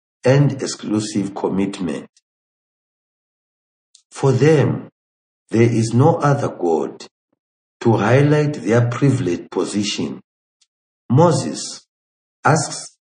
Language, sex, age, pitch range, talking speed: English, male, 60-79, 90-125 Hz, 80 wpm